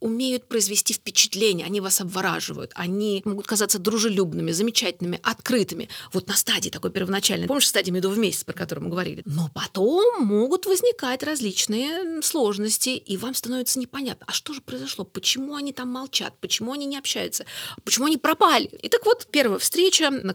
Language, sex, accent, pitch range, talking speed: Russian, female, native, 190-260 Hz, 165 wpm